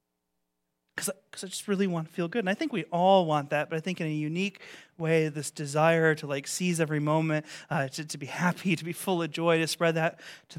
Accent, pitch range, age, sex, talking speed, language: American, 145-215 Hz, 30-49, male, 245 wpm, English